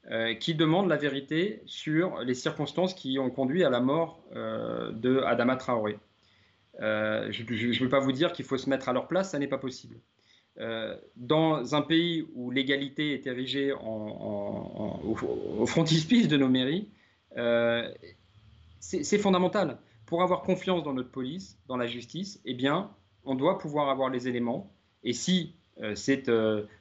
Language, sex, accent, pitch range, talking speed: French, male, French, 120-160 Hz, 175 wpm